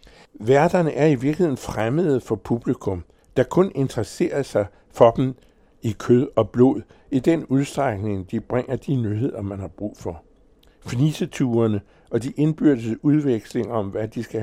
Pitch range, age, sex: 105-135 Hz, 60-79, male